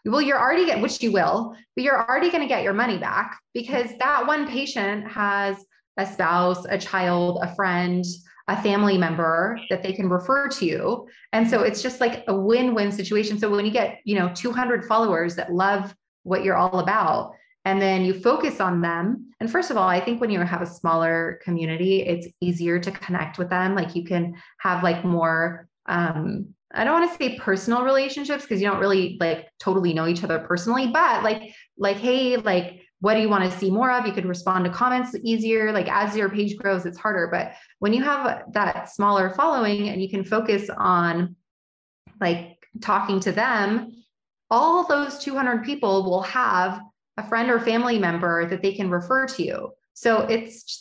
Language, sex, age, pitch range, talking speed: English, female, 20-39, 180-240 Hz, 195 wpm